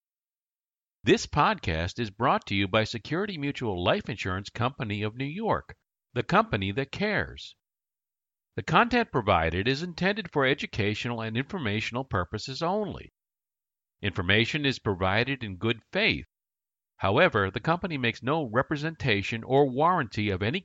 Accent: American